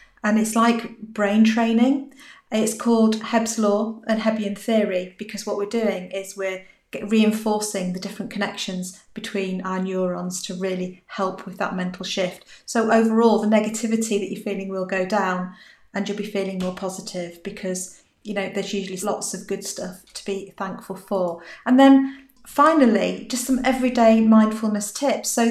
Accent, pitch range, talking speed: British, 195-230 Hz, 165 wpm